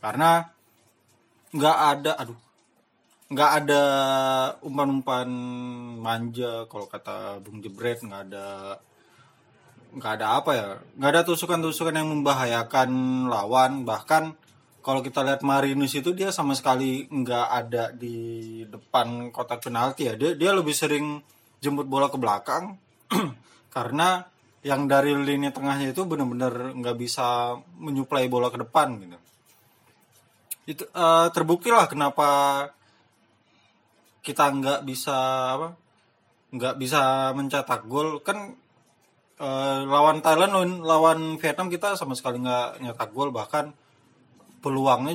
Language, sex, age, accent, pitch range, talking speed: Indonesian, male, 20-39, native, 120-145 Hz, 115 wpm